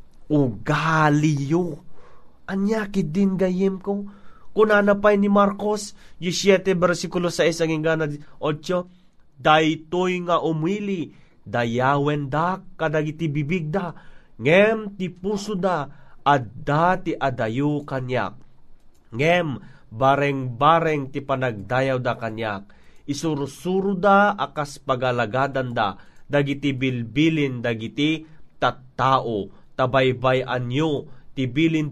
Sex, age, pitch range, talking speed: male, 30-49, 135-175 Hz, 85 wpm